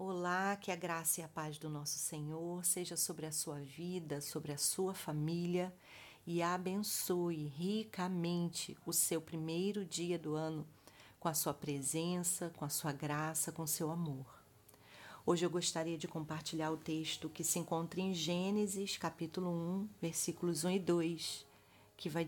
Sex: female